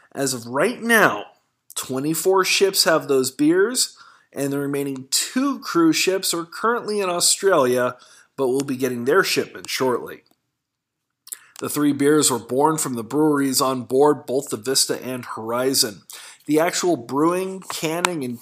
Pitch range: 130-165 Hz